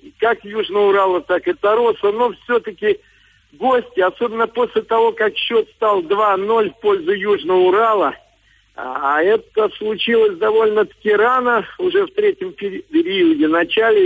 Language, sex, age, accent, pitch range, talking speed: Russian, male, 50-69, native, 200-335 Hz, 130 wpm